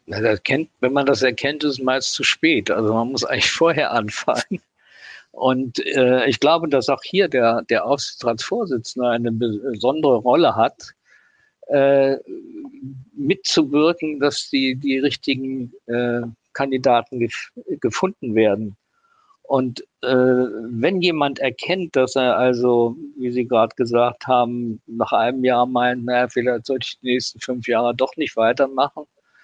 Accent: German